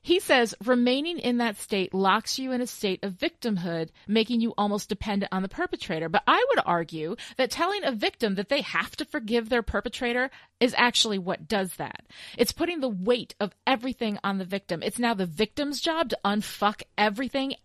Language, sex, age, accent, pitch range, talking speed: English, female, 30-49, American, 200-285 Hz, 195 wpm